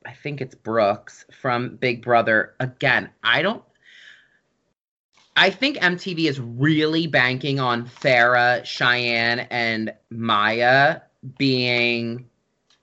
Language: English